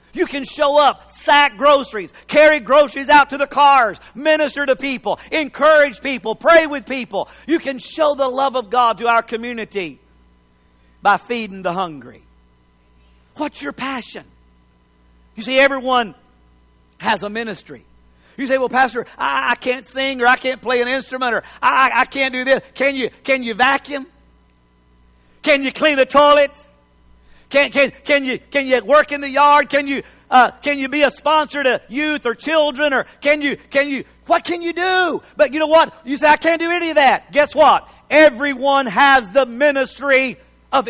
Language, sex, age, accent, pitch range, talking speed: English, male, 50-69, American, 220-295 Hz, 180 wpm